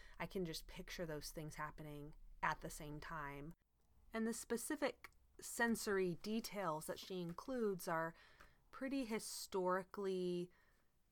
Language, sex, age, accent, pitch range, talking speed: English, female, 30-49, American, 155-190 Hz, 120 wpm